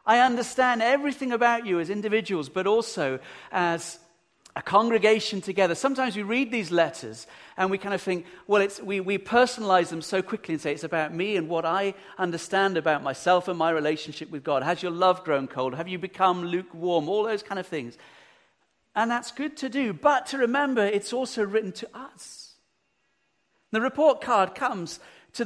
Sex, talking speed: male, 185 wpm